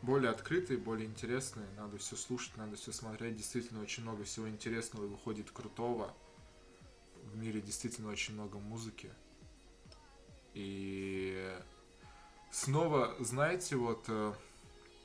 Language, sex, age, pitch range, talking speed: Russian, male, 20-39, 105-125 Hz, 110 wpm